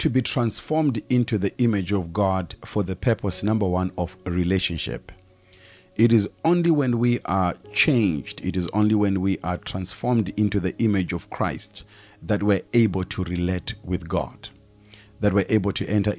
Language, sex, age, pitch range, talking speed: English, male, 40-59, 90-105 Hz, 170 wpm